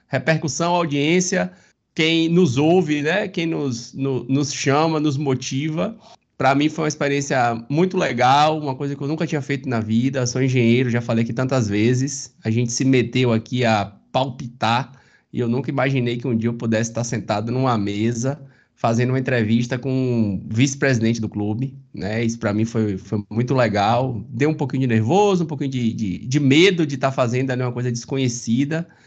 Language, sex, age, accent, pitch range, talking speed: Portuguese, male, 20-39, Brazilian, 115-135 Hz, 185 wpm